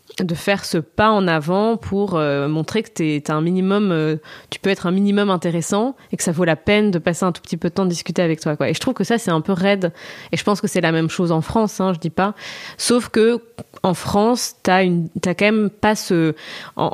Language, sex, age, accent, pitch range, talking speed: French, female, 20-39, French, 165-215 Hz, 260 wpm